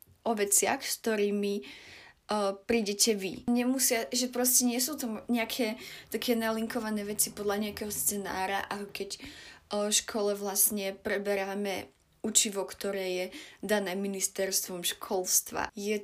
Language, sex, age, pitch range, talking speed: Slovak, female, 20-39, 200-230 Hz, 125 wpm